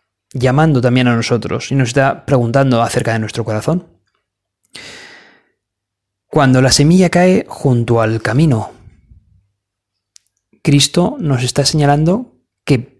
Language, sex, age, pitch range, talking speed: Spanish, male, 30-49, 115-165 Hz, 110 wpm